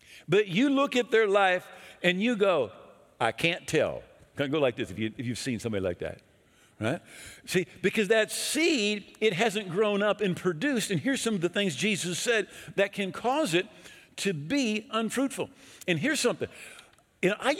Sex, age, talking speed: male, 50-69, 180 wpm